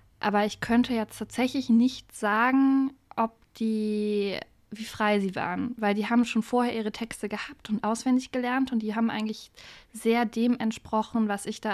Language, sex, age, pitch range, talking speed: German, female, 20-39, 210-245 Hz, 175 wpm